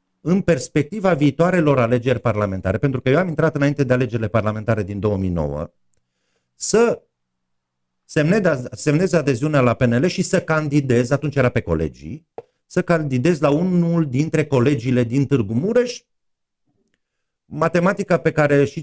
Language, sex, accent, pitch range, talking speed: Romanian, male, native, 110-160 Hz, 130 wpm